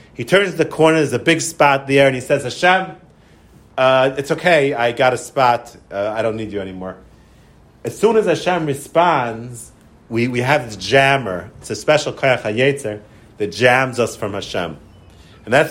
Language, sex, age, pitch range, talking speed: English, male, 40-59, 110-150 Hz, 185 wpm